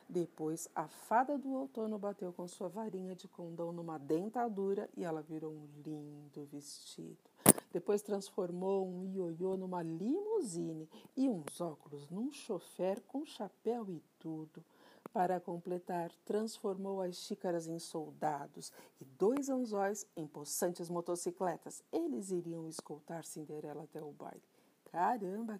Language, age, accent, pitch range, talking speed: Portuguese, 50-69, Brazilian, 160-210 Hz, 130 wpm